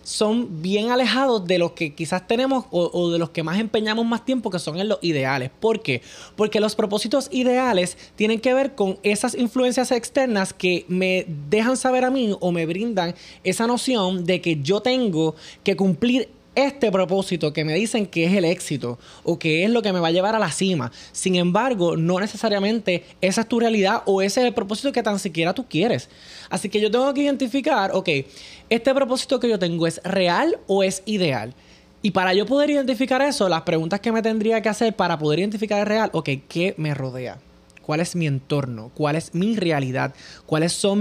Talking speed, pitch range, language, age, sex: 205 wpm, 165-230 Hz, Spanish, 20-39, male